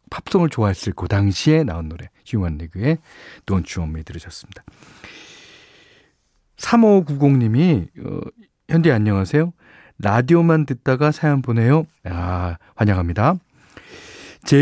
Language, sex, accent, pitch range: Korean, male, native, 100-160 Hz